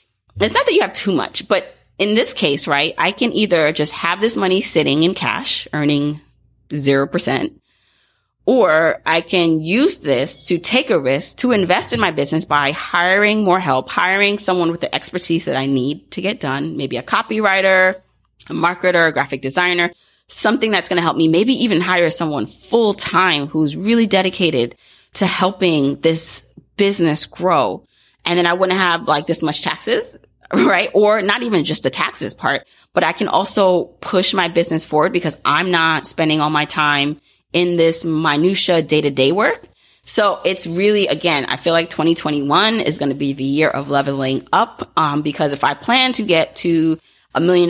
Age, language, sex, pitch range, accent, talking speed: 30-49, English, female, 150-185 Hz, American, 180 wpm